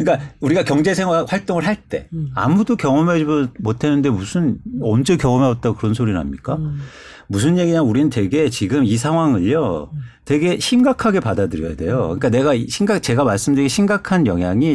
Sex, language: male, Korean